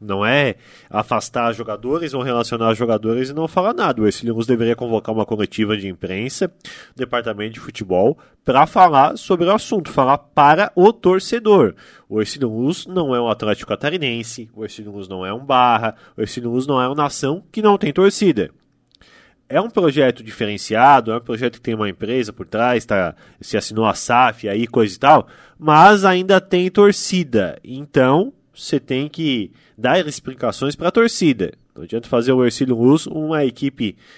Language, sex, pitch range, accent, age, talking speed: Portuguese, male, 115-150 Hz, Brazilian, 20-39, 180 wpm